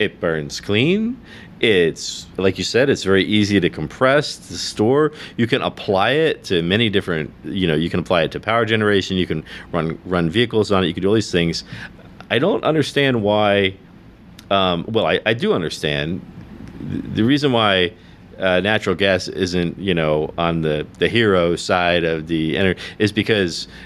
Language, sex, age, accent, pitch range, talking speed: English, male, 40-59, American, 80-100 Hz, 185 wpm